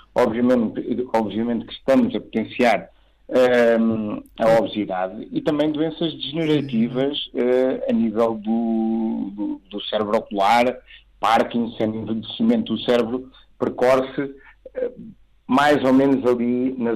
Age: 50-69